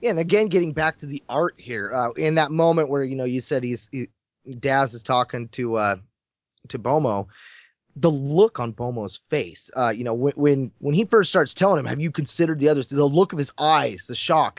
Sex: male